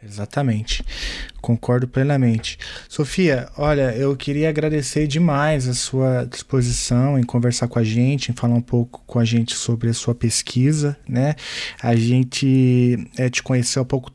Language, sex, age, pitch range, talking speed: Portuguese, male, 20-39, 125-150 Hz, 155 wpm